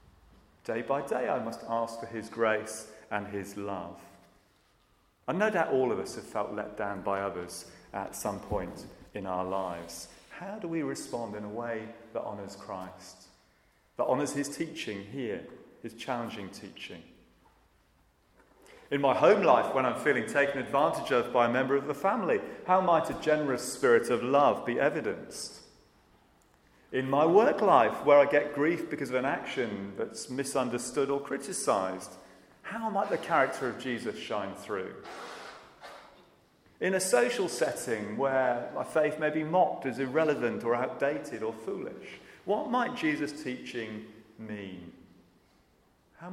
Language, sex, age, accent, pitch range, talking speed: English, male, 40-59, British, 100-150 Hz, 155 wpm